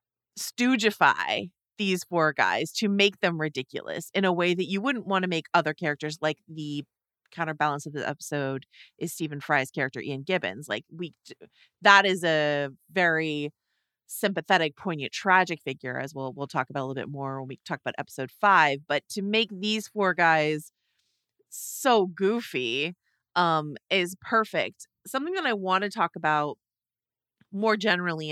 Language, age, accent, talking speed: English, 30-49, American, 160 wpm